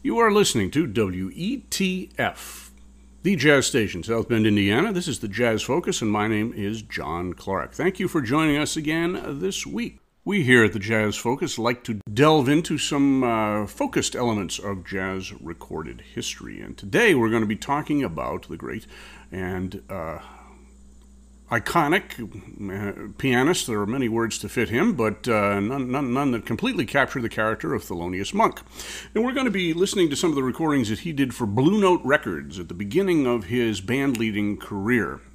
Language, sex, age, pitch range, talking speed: English, male, 50-69, 100-145 Hz, 185 wpm